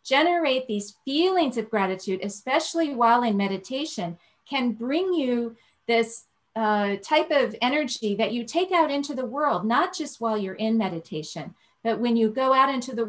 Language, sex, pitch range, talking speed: English, female, 215-285 Hz, 170 wpm